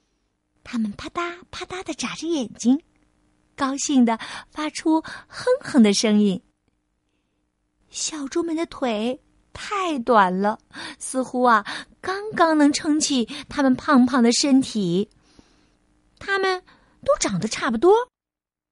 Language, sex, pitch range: Chinese, female, 225-310 Hz